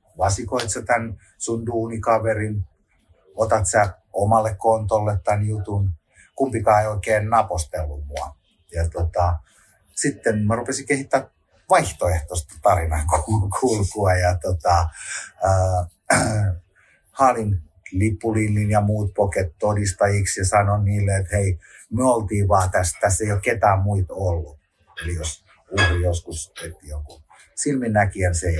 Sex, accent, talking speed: male, native, 120 wpm